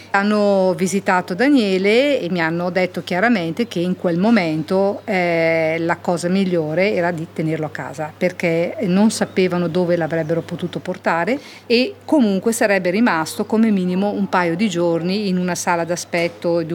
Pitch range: 170-215 Hz